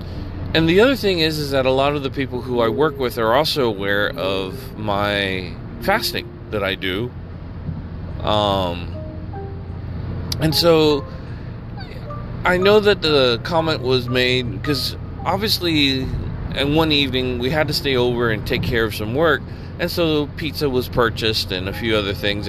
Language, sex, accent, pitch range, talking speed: English, male, American, 100-135 Hz, 165 wpm